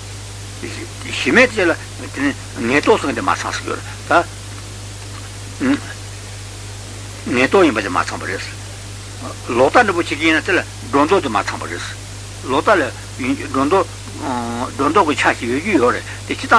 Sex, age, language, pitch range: male, 60-79, Italian, 100-115 Hz